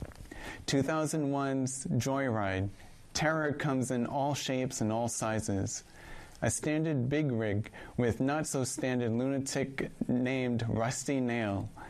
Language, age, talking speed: English, 30-49, 100 wpm